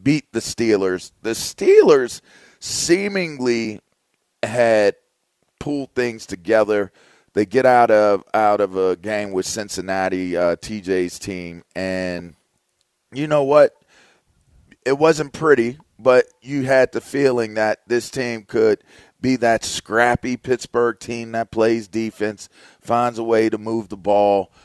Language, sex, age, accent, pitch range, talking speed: English, male, 40-59, American, 95-125 Hz, 130 wpm